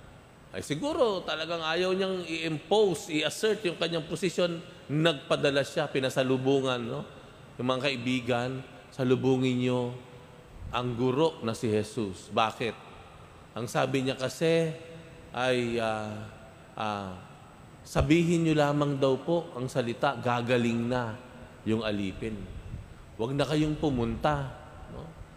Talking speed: 115 wpm